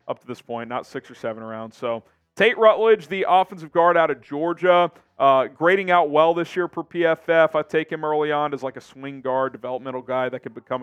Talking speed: 225 wpm